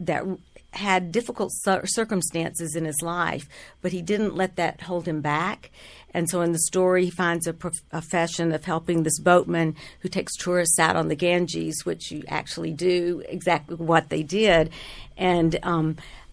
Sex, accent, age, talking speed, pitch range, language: female, American, 50-69, 175 wpm, 160-180 Hz, English